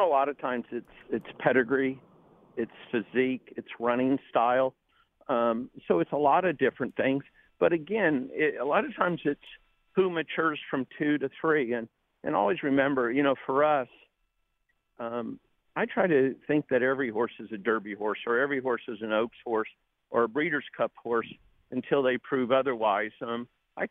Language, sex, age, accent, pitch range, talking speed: English, male, 50-69, American, 115-140 Hz, 180 wpm